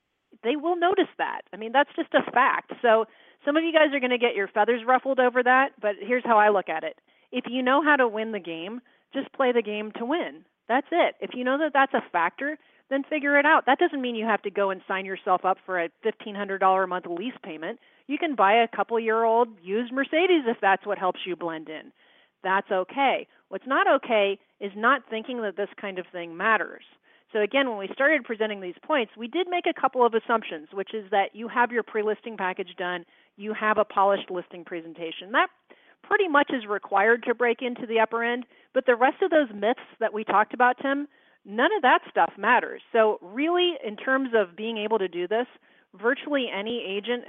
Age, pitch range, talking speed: 30-49, 200-270 Hz, 225 wpm